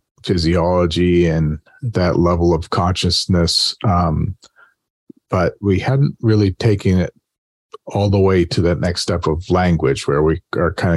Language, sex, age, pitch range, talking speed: English, male, 40-59, 80-100 Hz, 140 wpm